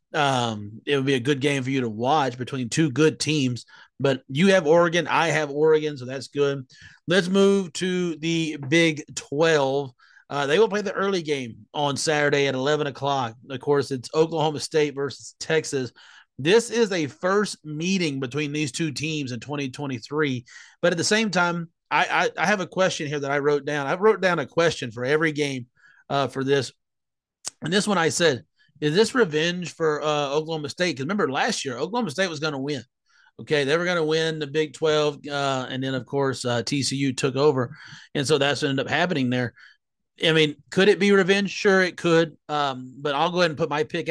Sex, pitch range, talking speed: male, 135-160 Hz, 210 wpm